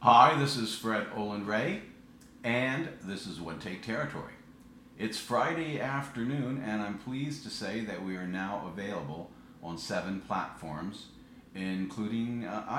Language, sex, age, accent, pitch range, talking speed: English, male, 50-69, American, 85-115 Hz, 140 wpm